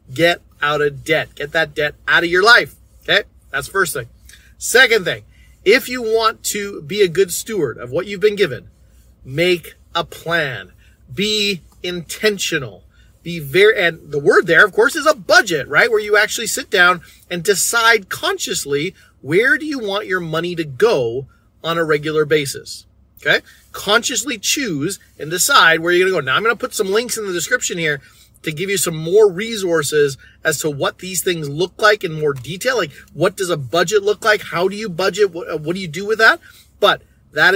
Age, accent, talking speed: 30-49, American, 195 wpm